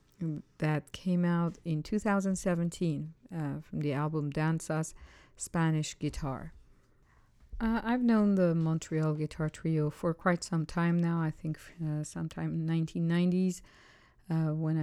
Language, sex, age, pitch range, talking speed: English, female, 50-69, 155-185 Hz, 130 wpm